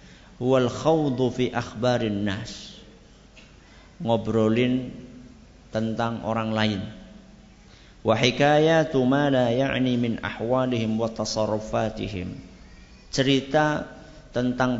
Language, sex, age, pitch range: Indonesian, male, 50-69, 110-125 Hz